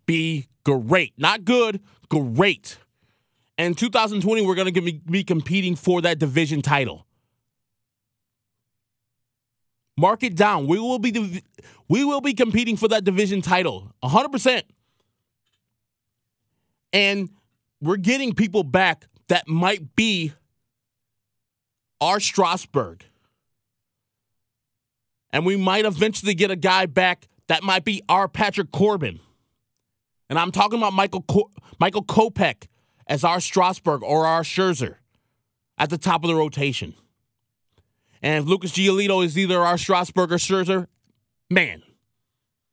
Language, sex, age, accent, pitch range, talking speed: English, male, 20-39, American, 120-190 Hz, 120 wpm